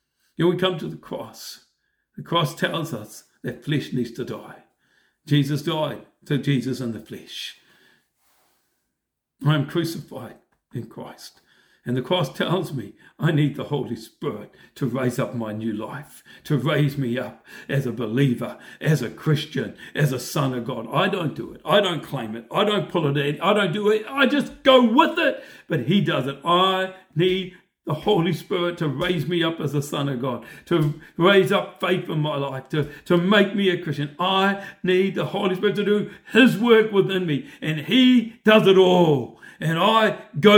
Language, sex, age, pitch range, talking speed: English, male, 60-79, 145-195 Hz, 195 wpm